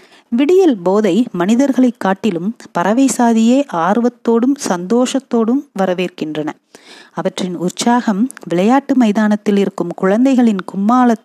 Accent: native